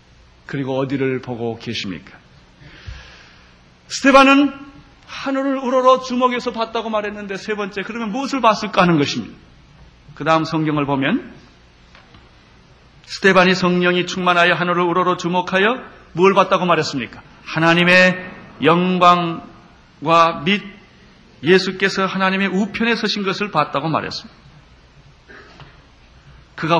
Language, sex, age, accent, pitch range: Korean, male, 30-49, native, 150-220 Hz